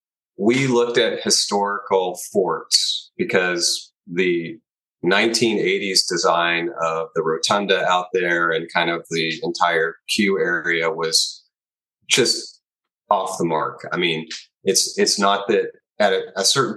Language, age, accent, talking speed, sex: English, 30-49, American, 130 wpm, male